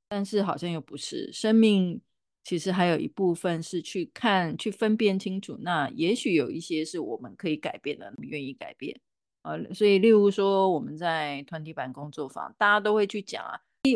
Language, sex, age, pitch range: Chinese, female, 30-49, 160-200 Hz